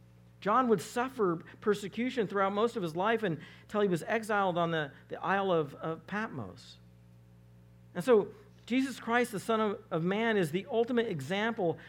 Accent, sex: American, male